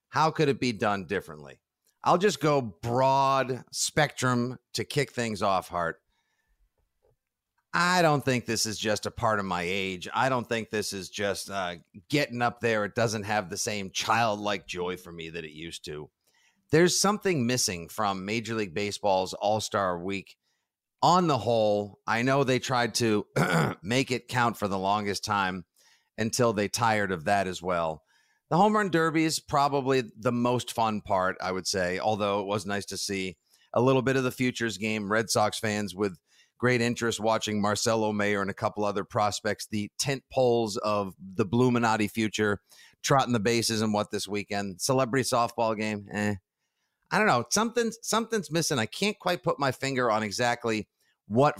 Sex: male